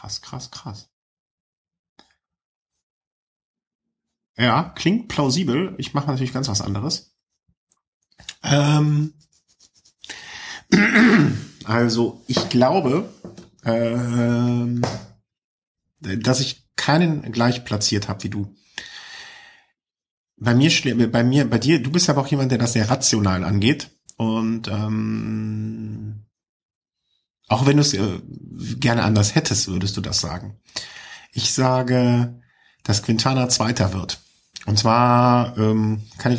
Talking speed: 105 wpm